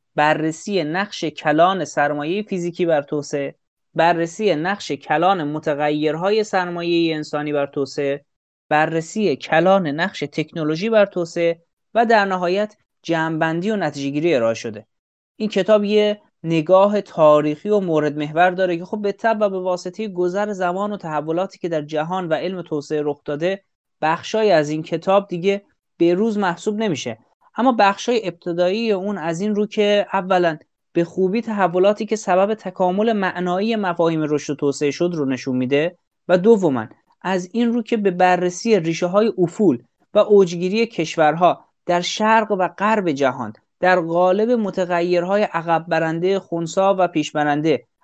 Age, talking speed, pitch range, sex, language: 30-49, 145 wpm, 155-200 Hz, male, Persian